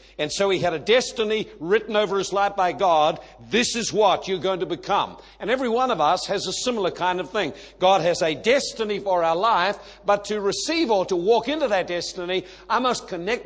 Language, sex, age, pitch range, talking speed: English, male, 60-79, 180-220 Hz, 220 wpm